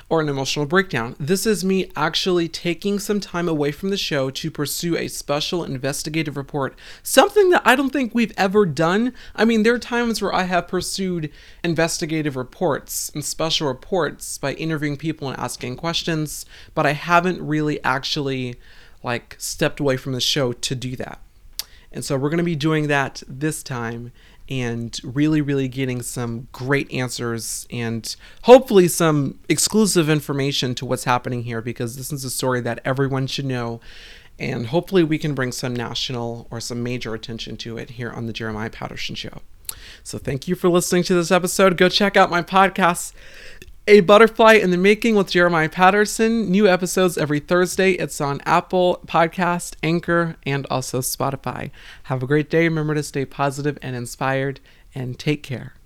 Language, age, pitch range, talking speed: English, 30-49, 130-180 Hz, 175 wpm